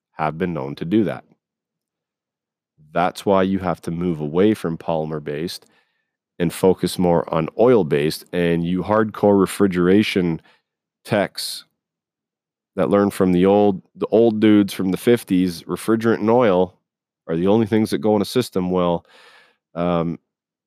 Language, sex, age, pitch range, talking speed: English, male, 40-59, 85-100 Hz, 145 wpm